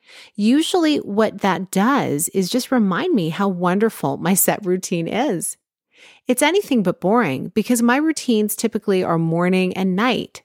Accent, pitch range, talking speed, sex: American, 160-230 Hz, 150 wpm, female